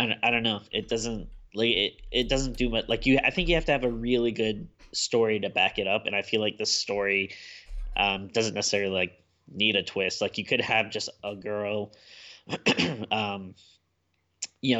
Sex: male